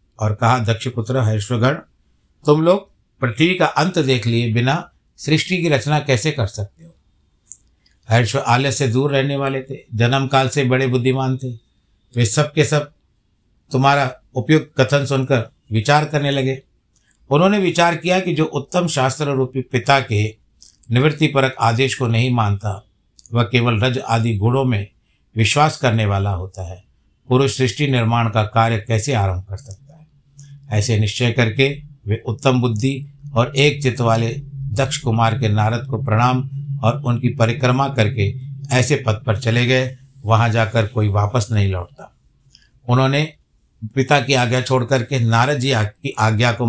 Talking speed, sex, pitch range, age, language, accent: 155 wpm, male, 115-140 Hz, 60-79, Hindi, native